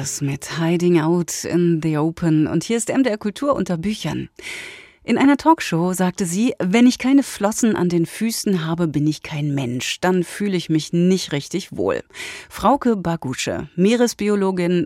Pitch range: 165-220 Hz